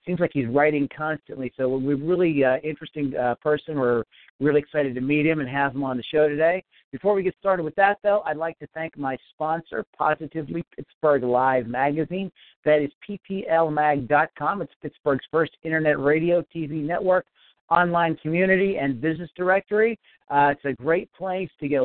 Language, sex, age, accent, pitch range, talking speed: English, male, 50-69, American, 130-160 Hz, 180 wpm